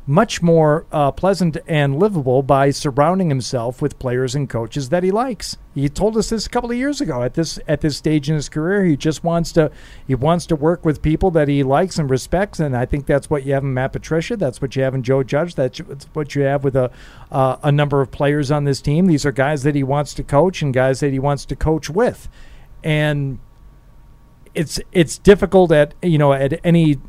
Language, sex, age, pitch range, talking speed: English, male, 50-69, 135-165 Hz, 230 wpm